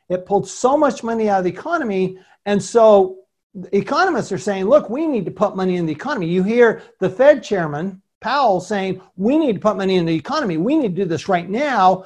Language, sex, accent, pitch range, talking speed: English, male, American, 175-220 Hz, 225 wpm